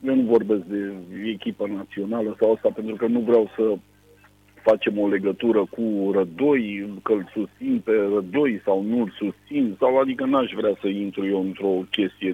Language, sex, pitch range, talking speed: Romanian, male, 100-165 Hz, 170 wpm